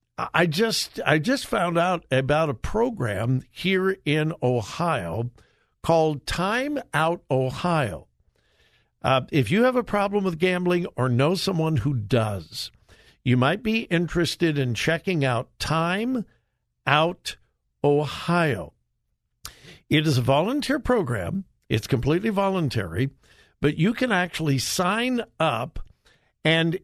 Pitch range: 125-180 Hz